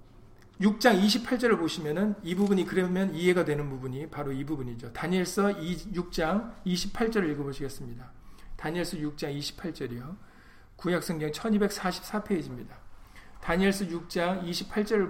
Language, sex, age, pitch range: Korean, male, 40-59, 150-200 Hz